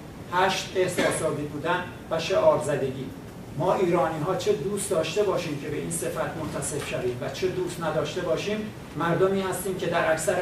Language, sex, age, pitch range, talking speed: Persian, male, 60-79, 150-185 Hz, 160 wpm